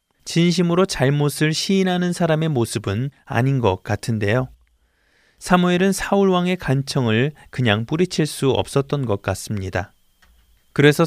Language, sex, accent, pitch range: Korean, male, native, 110-165 Hz